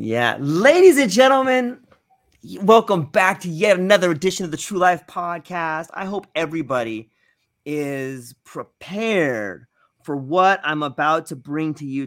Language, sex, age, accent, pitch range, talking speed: English, male, 30-49, American, 135-180 Hz, 140 wpm